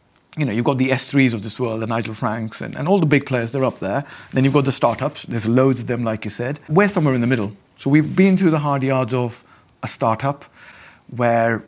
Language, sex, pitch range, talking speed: English, male, 120-145 Hz, 250 wpm